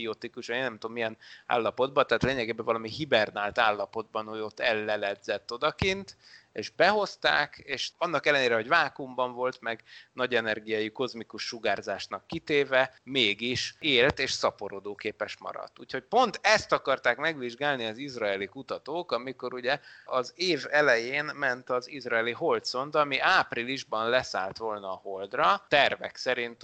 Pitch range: 110-135 Hz